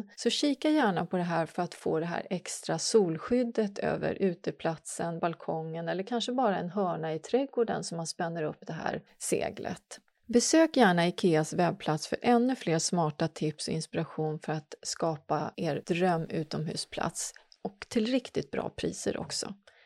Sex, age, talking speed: female, 30-49, 160 wpm